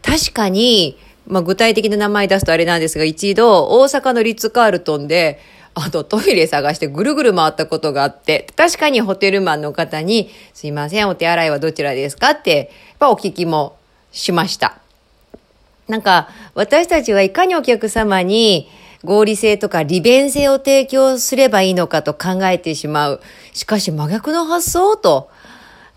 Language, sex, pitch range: Japanese, female, 165-240 Hz